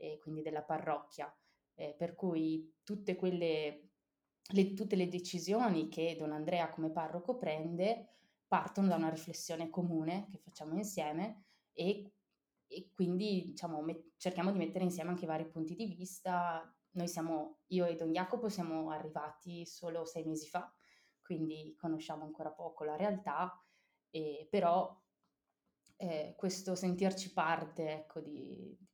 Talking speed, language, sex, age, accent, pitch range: 130 wpm, Italian, female, 20-39, native, 160-185 Hz